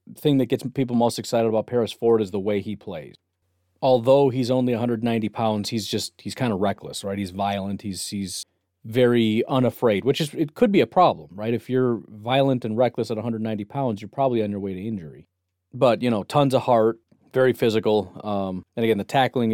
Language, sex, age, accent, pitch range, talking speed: English, male, 40-59, American, 105-125 Hz, 210 wpm